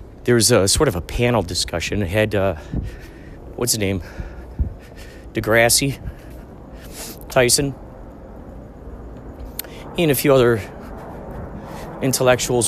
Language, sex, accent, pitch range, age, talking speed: English, male, American, 115-155 Hz, 40-59, 100 wpm